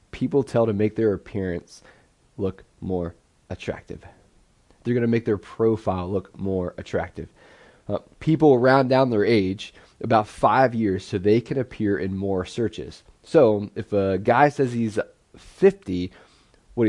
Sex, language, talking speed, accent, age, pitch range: male, English, 150 wpm, American, 30-49, 105-130 Hz